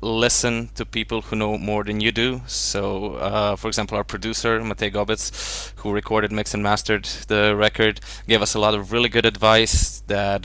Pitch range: 105-115 Hz